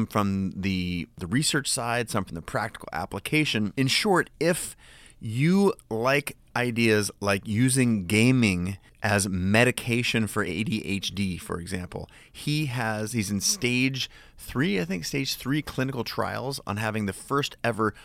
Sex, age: male, 30-49